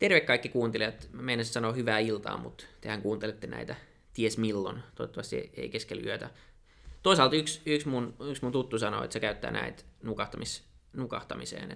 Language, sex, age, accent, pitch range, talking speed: Finnish, male, 20-39, native, 105-125 Hz, 160 wpm